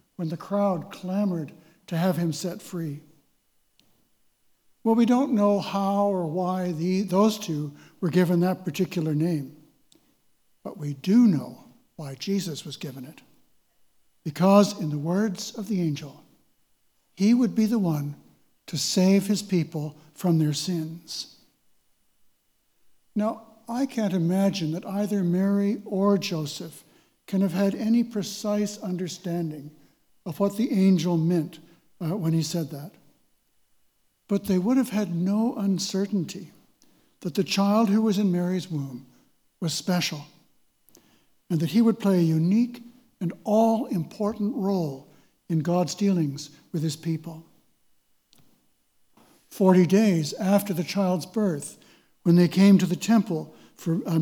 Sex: male